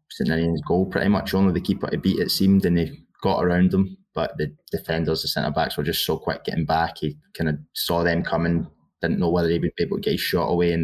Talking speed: 255 wpm